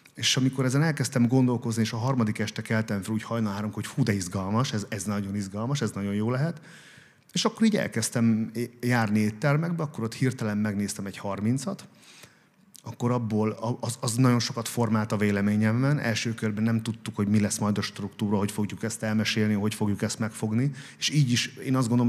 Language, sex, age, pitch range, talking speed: Hungarian, male, 30-49, 105-120 Hz, 190 wpm